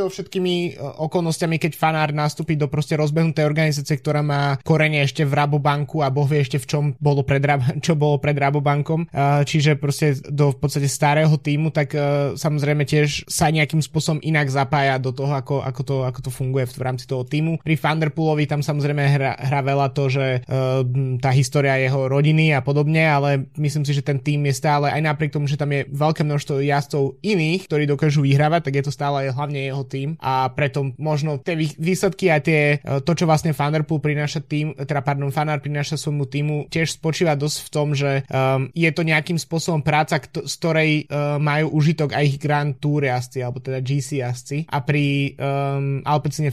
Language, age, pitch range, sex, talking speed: Slovak, 20-39, 140-155 Hz, male, 190 wpm